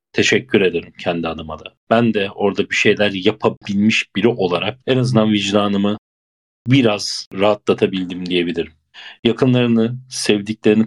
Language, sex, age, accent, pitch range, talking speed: English, male, 40-59, Turkish, 100-120 Hz, 115 wpm